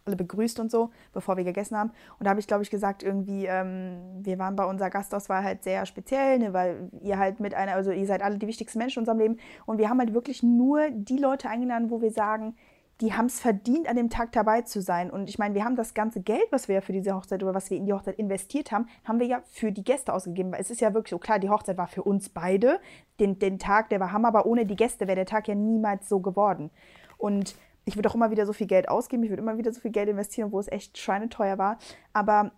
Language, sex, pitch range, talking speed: German, female, 195-235 Hz, 270 wpm